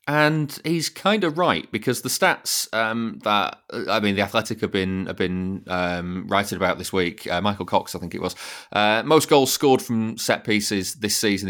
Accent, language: British, English